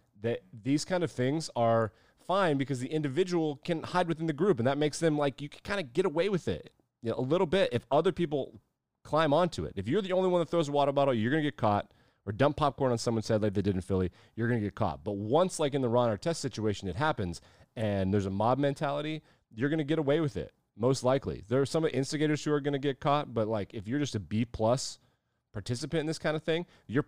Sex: male